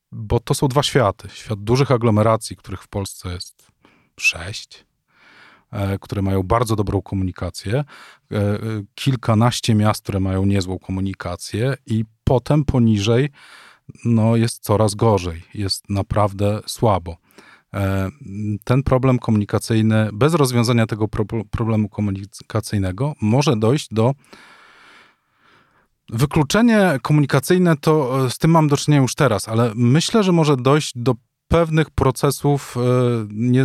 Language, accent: Polish, native